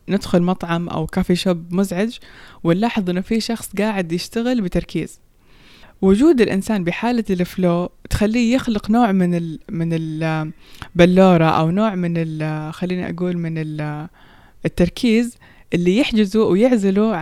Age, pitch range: 20-39, 170-215 Hz